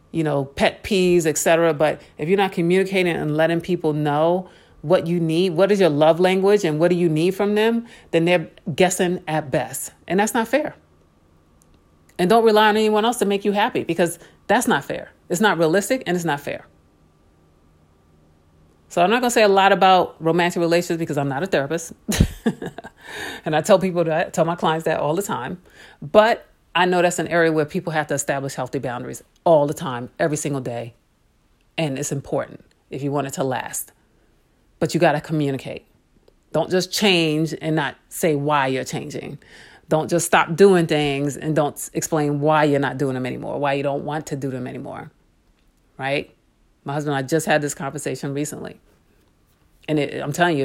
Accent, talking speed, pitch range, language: American, 195 wpm, 140-180 Hz, English